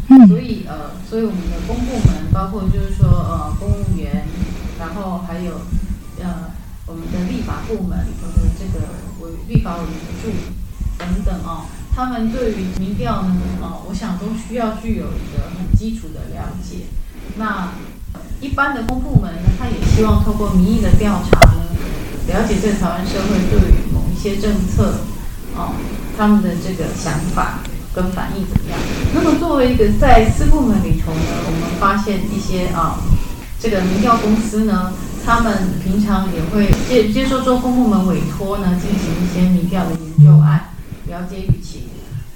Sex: female